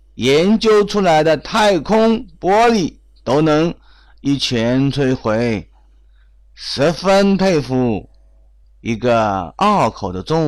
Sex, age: male, 30-49